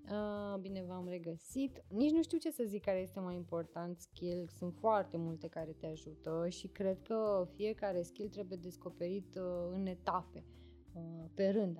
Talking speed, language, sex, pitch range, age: 160 wpm, Romanian, female, 170-205 Hz, 20-39